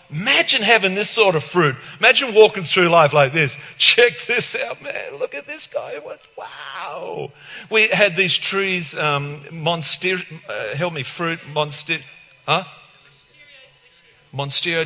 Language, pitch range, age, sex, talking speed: English, 140-180 Hz, 40-59, male, 135 wpm